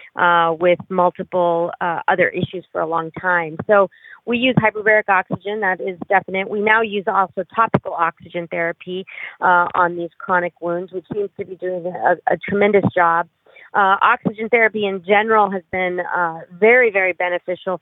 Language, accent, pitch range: English, American, 175-195 Hz